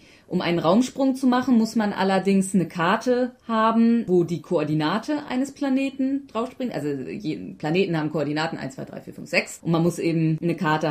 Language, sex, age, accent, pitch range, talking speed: German, female, 30-49, German, 165-255 Hz, 195 wpm